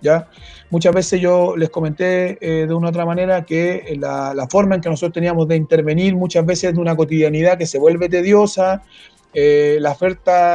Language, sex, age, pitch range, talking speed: Spanish, male, 40-59, 165-190 Hz, 190 wpm